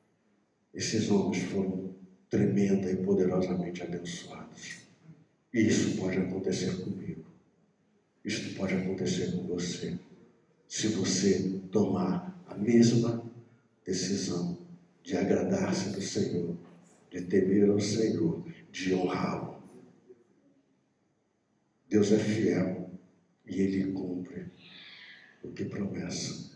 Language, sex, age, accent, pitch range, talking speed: Portuguese, male, 60-79, Brazilian, 95-120 Hz, 95 wpm